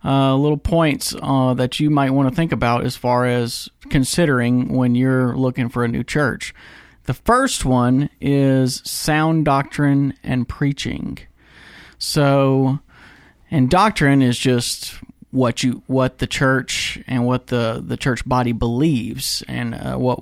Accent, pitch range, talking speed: American, 125-155 Hz, 150 wpm